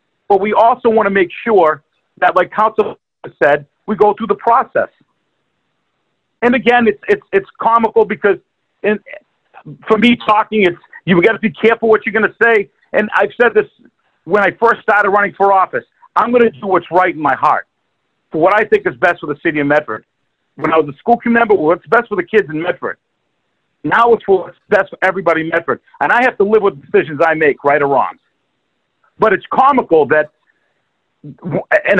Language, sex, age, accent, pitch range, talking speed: English, male, 50-69, American, 175-230 Hz, 205 wpm